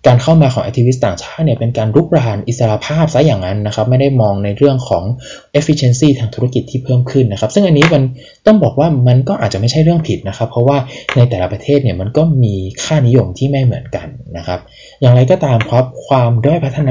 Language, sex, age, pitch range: Thai, male, 20-39, 110-145 Hz